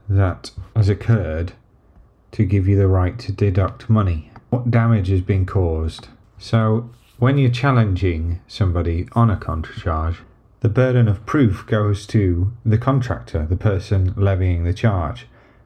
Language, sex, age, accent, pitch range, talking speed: English, male, 30-49, British, 95-115 Hz, 145 wpm